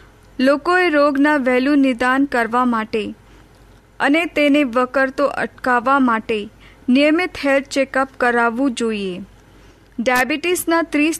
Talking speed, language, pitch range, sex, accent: 75 wpm, Hindi, 240-285 Hz, female, native